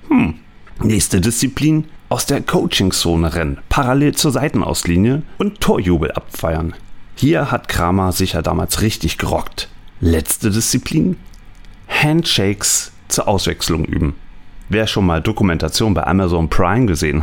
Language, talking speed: German, 120 wpm